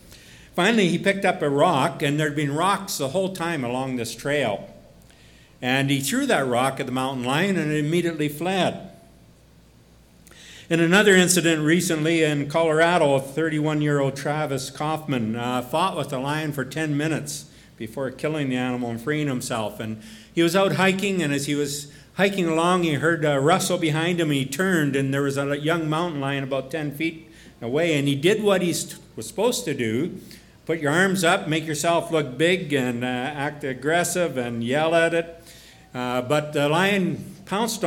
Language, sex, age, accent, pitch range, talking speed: English, male, 60-79, American, 135-170 Hz, 185 wpm